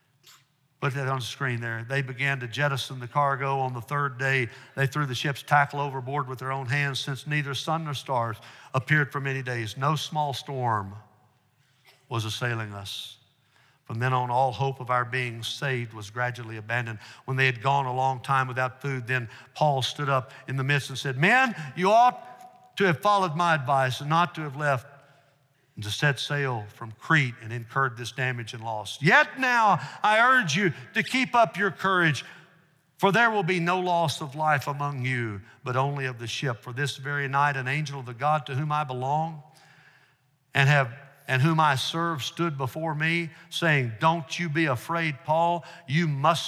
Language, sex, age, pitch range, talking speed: English, male, 60-79, 125-155 Hz, 195 wpm